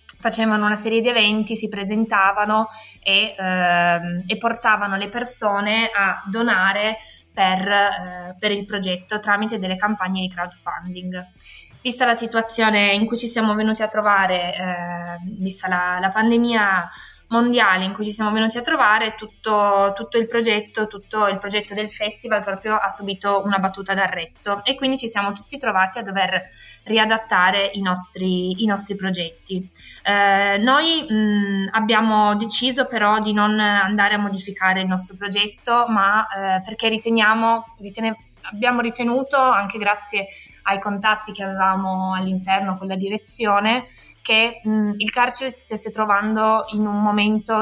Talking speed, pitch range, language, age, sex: 145 wpm, 195-220 Hz, Italian, 20-39, female